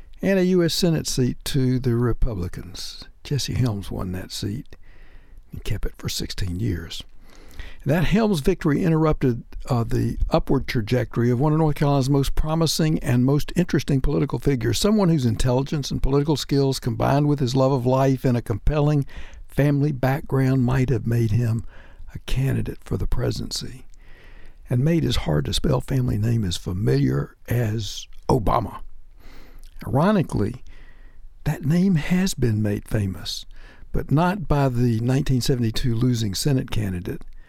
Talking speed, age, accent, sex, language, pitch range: 145 wpm, 60-79, American, male, English, 110-145 Hz